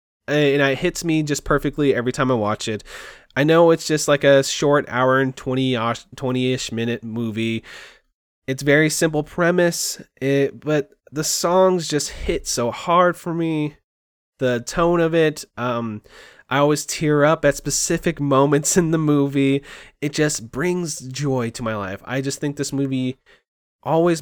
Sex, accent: male, American